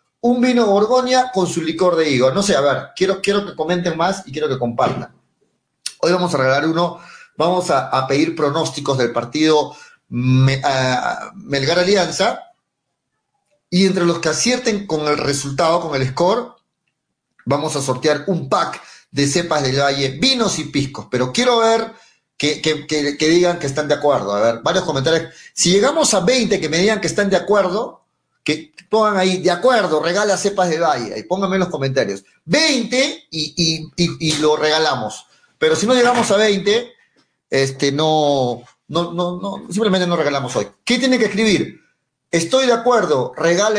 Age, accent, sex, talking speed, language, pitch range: 40-59, Mexican, male, 175 wpm, Spanish, 150-210 Hz